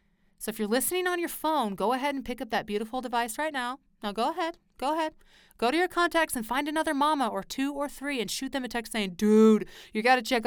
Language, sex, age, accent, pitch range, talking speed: English, female, 30-49, American, 210-300 Hz, 260 wpm